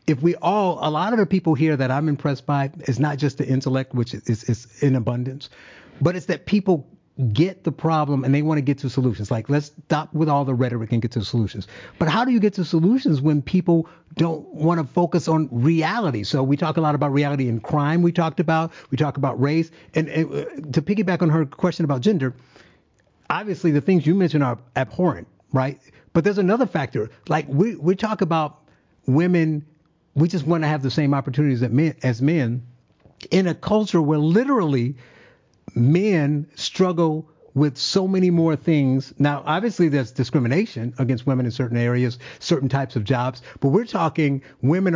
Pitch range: 135-170 Hz